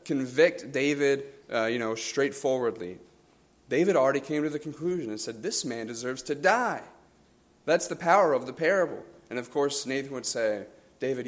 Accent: American